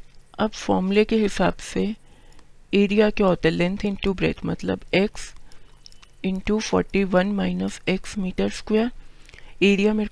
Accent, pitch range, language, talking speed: native, 170-190 Hz, Hindi, 130 wpm